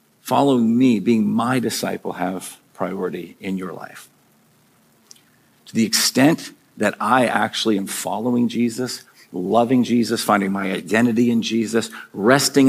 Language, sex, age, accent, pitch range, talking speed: English, male, 50-69, American, 115-145 Hz, 130 wpm